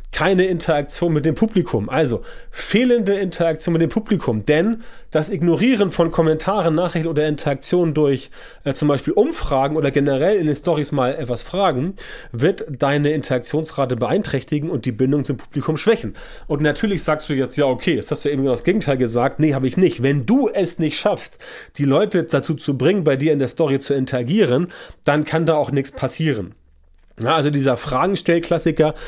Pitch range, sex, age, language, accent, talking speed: 135-165 Hz, male, 30-49, German, German, 180 wpm